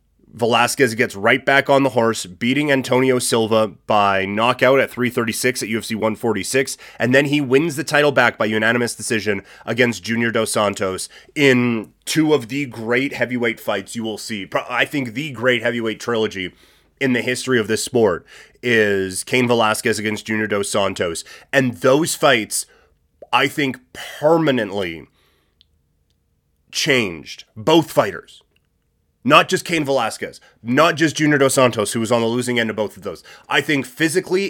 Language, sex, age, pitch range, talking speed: English, male, 30-49, 110-145 Hz, 160 wpm